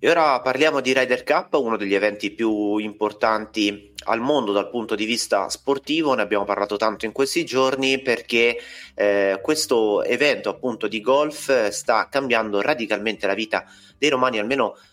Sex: male